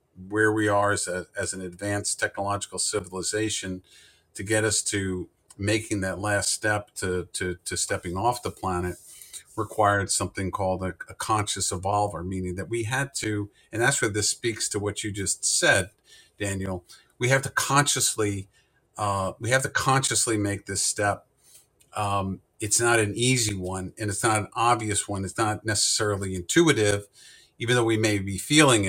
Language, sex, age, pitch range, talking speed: English, male, 50-69, 100-115 Hz, 170 wpm